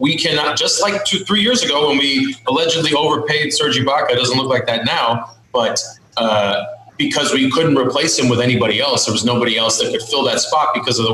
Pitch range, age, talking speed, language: 120-160 Hz, 30-49, 220 wpm, English